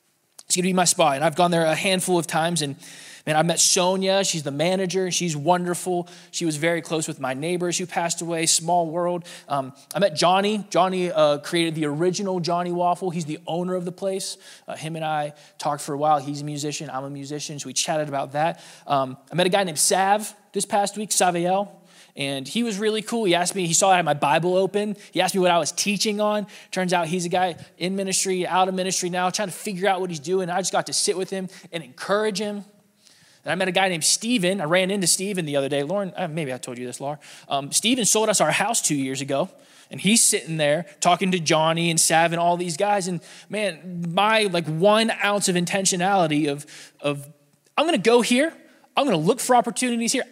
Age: 20-39